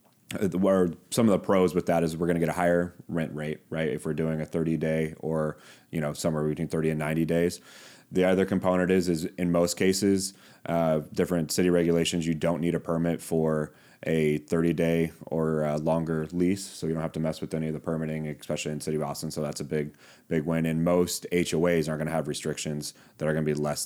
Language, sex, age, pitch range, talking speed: English, male, 30-49, 75-90 Hz, 235 wpm